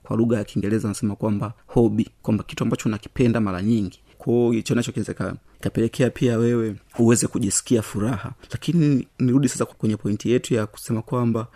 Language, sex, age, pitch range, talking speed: Swahili, male, 30-49, 105-120 Hz, 160 wpm